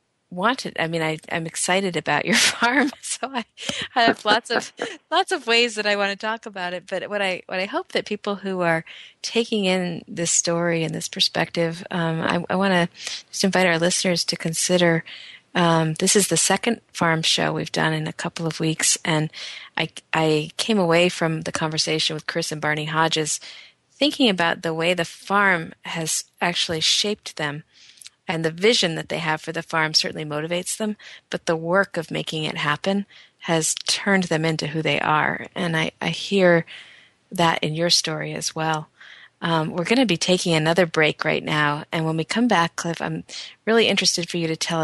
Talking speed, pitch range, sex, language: 200 wpm, 160-195 Hz, female, English